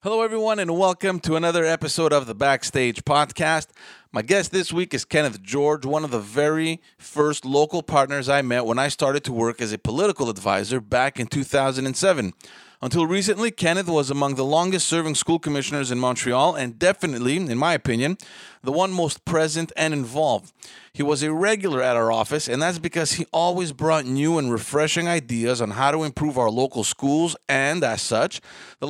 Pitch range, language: 125-165 Hz, English